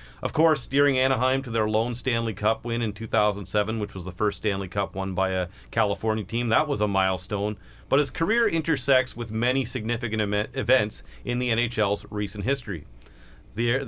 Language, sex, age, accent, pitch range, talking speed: English, male, 40-59, American, 105-130 Hz, 175 wpm